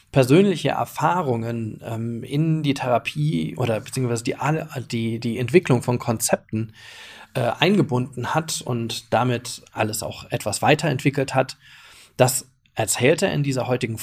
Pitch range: 115-145 Hz